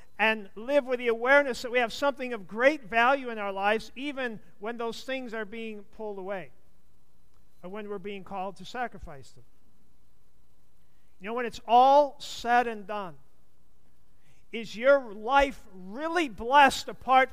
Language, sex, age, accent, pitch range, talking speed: English, male, 50-69, American, 185-240 Hz, 155 wpm